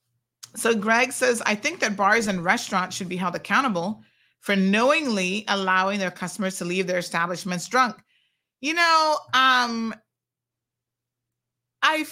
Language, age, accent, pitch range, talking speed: English, 30-49, American, 190-270 Hz, 135 wpm